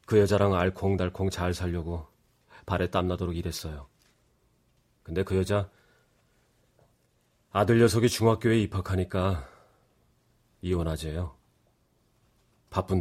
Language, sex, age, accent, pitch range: Korean, male, 30-49, native, 85-100 Hz